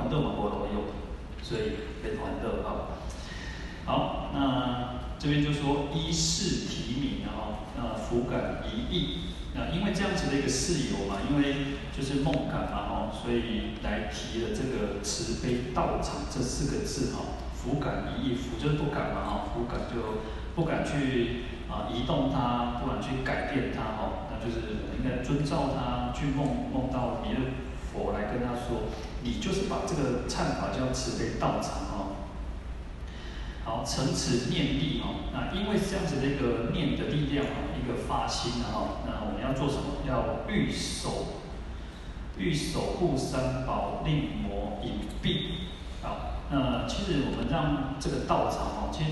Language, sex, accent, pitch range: Chinese, male, native, 105-140 Hz